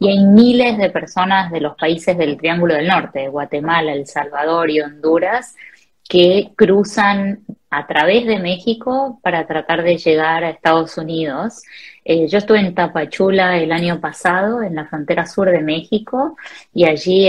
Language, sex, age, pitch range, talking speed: Spanish, female, 20-39, 160-205 Hz, 160 wpm